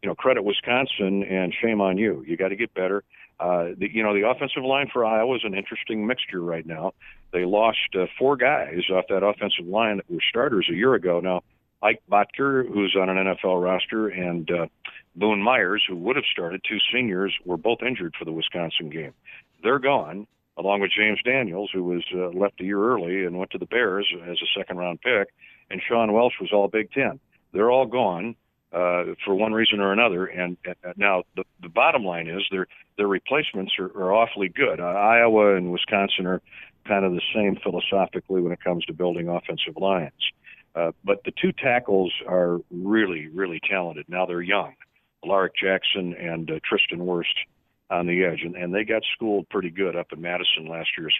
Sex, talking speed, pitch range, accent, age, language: male, 200 wpm, 90-110 Hz, American, 50-69, English